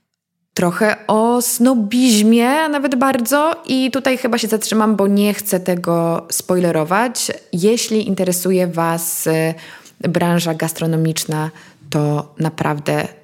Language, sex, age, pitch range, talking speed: Polish, female, 20-39, 175-220 Hz, 100 wpm